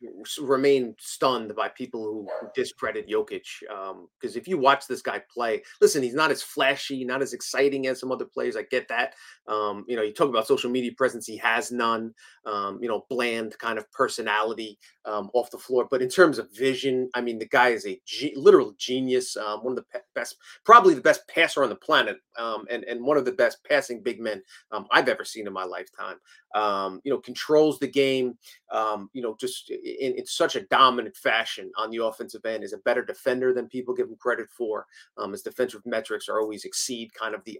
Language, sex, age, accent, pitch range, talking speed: English, male, 30-49, American, 115-145 Hz, 220 wpm